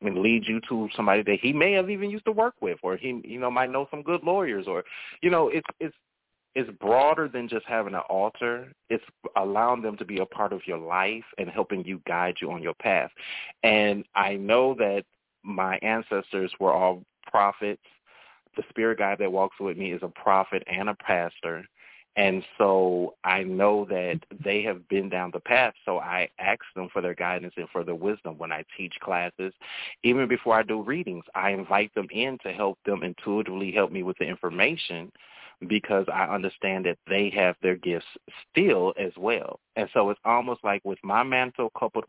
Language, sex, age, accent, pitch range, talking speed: English, male, 30-49, American, 95-125 Hz, 200 wpm